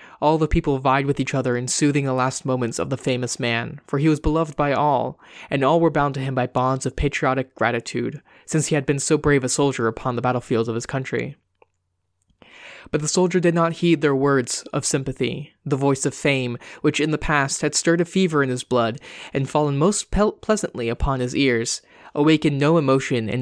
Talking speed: 215 wpm